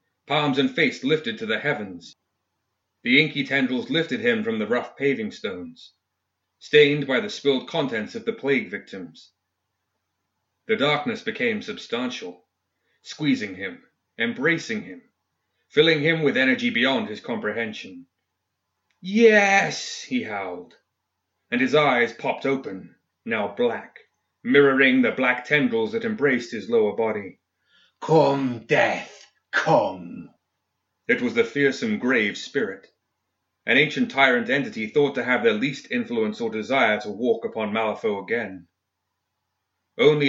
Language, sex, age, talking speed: English, male, 30-49, 130 wpm